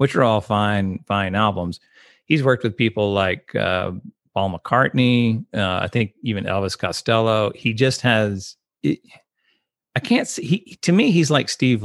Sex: male